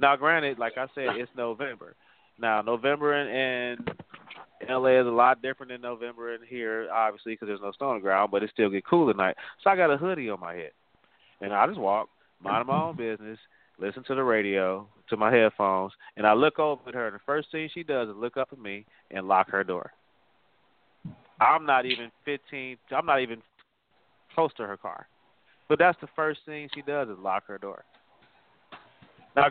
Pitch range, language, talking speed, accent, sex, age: 105-135 Hz, English, 205 wpm, American, male, 30-49